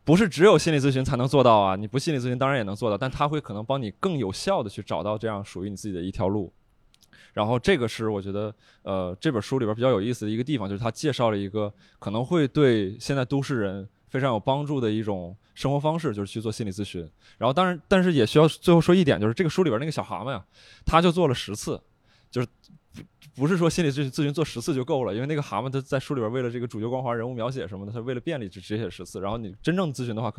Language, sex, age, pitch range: Chinese, male, 20-39, 110-155 Hz